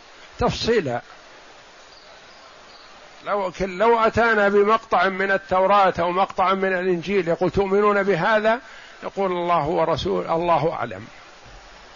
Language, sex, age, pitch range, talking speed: Arabic, male, 50-69, 160-205 Hz, 95 wpm